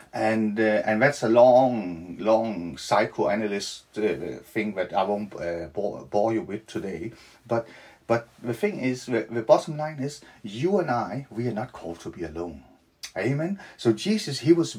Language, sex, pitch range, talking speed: English, male, 110-145 Hz, 180 wpm